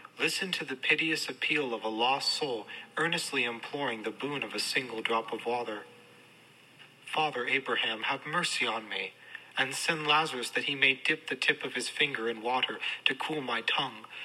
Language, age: English, 40-59